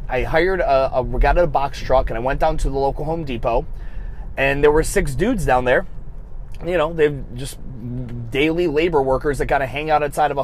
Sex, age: male, 20-39